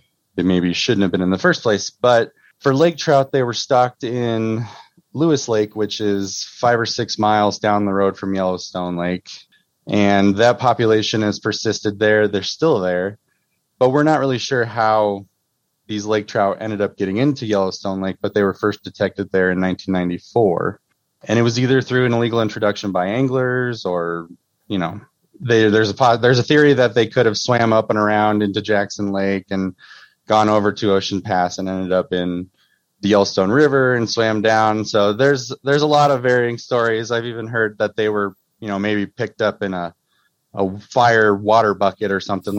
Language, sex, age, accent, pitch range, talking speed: English, male, 20-39, American, 100-120 Hz, 190 wpm